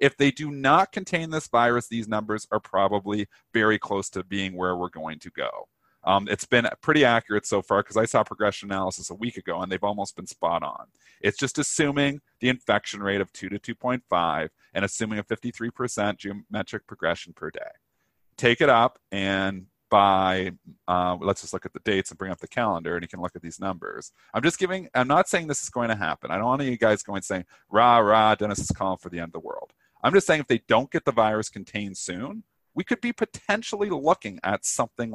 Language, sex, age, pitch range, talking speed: English, male, 40-59, 100-130 Hz, 225 wpm